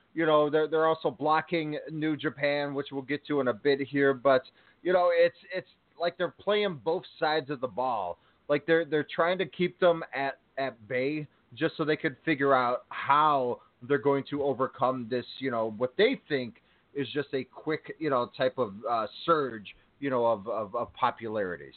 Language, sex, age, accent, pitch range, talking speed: English, male, 30-49, American, 135-165 Hz, 200 wpm